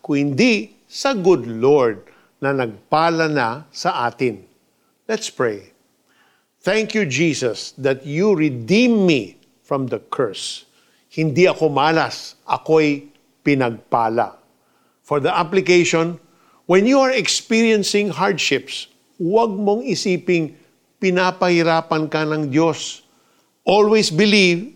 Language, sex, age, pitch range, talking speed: Filipino, male, 50-69, 140-185 Hz, 105 wpm